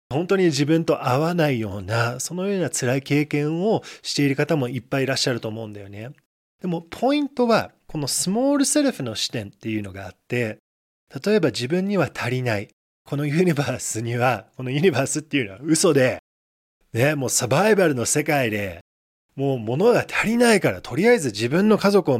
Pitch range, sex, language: 120-175 Hz, male, Japanese